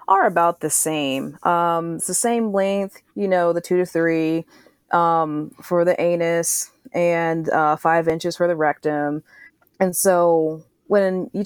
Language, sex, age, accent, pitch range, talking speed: English, female, 20-39, American, 165-195 Hz, 155 wpm